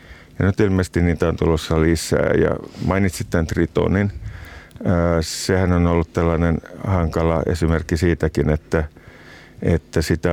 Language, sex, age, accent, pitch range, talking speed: Finnish, male, 50-69, native, 80-90 Hz, 120 wpm